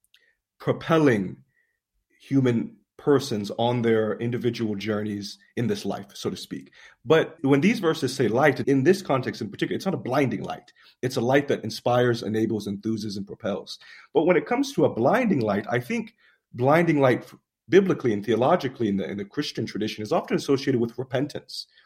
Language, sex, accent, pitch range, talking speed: English, male, American, 110-150 Hz, 175 wpm